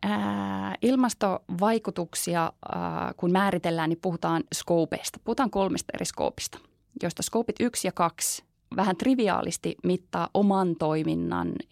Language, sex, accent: Finnish, female, native